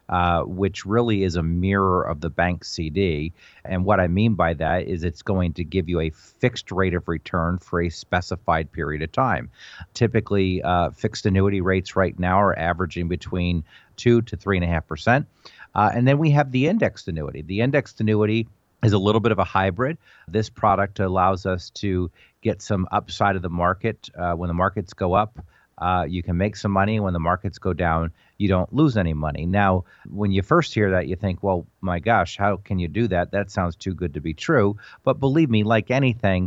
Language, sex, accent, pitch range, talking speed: English, male, American, 90-105 Hz, 205 wpm